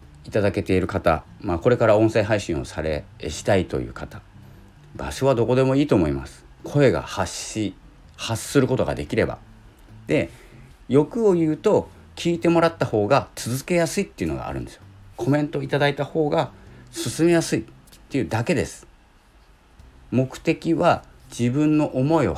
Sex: male